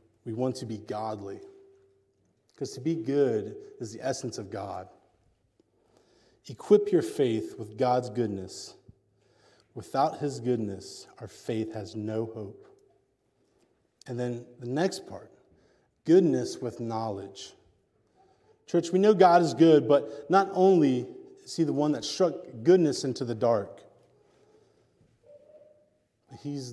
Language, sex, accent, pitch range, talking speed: English, male, American, 115-155 Hz, 125 wpm